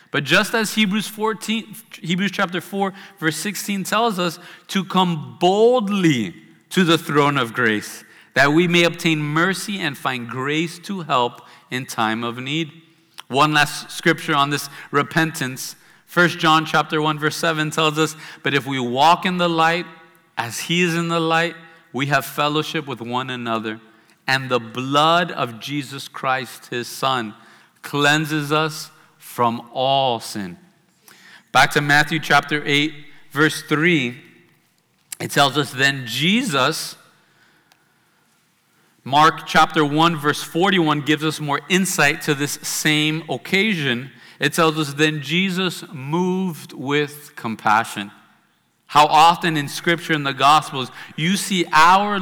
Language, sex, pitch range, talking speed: English, male, 140-170 Hz, 140 wpm